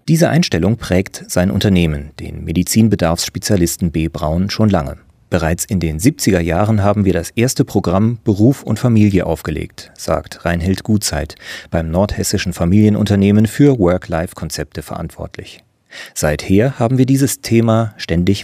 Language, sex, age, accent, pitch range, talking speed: German, male, 40-59, German, 85-115 Hz, 130 wpm